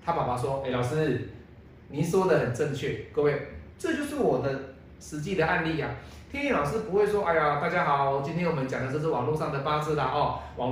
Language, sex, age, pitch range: Chinese, male, 30-49, 120-195 Hz